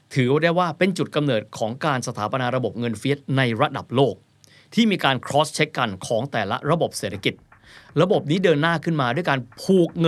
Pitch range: 120-170 Hz